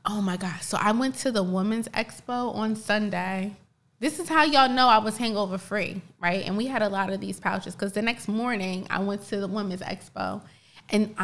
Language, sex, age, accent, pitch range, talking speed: English, female, 20-39, American, 180-225 Hz, 220 wpm